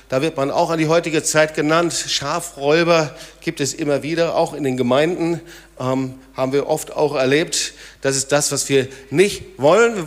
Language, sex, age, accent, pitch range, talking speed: German, male, 50-69, German, 140-205 Hz, 190 wpm